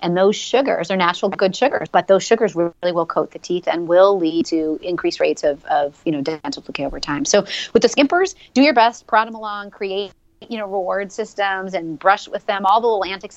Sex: female